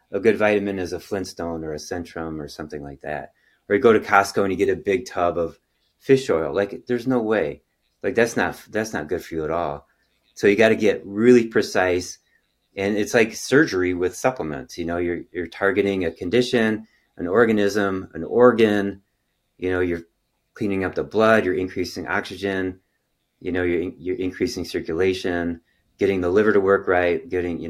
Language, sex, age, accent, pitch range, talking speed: English, male, 30-49, American, 85-115 Hz, 195 wpm